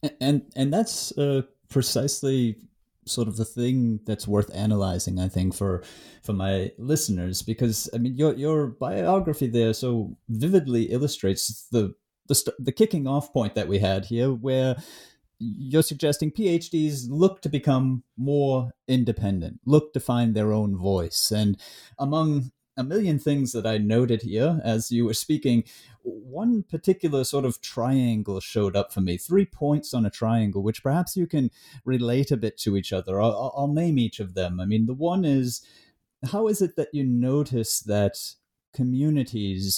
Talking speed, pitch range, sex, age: 165 wpm, 110-145 Hz, male, 30-49